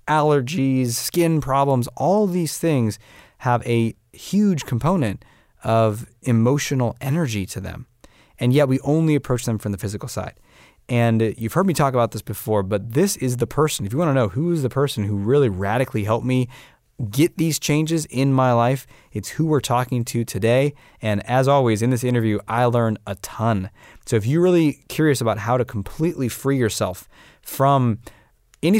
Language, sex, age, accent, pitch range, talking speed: English, male, 20-39, American, 110-140 Hz, 180 wpm